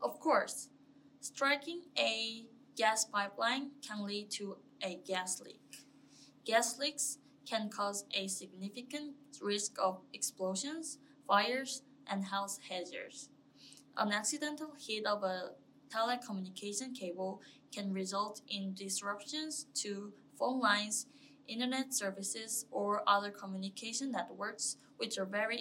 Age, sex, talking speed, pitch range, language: 20-39, female, 110 wpm, 200-265 Hz, English